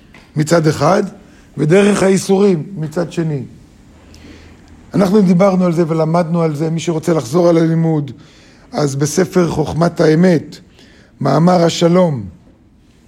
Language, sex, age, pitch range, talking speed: Hebrew, male, 50-69, 150-185 Hz, 110 wpm